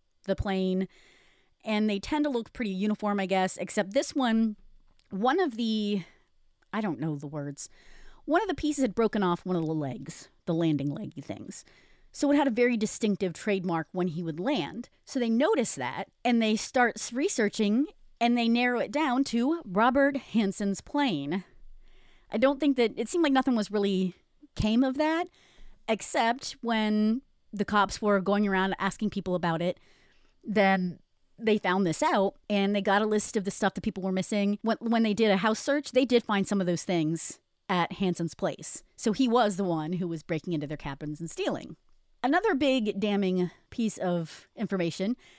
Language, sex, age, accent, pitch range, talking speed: English, female, 30-49, American, 185-245 Hz, 190 wpm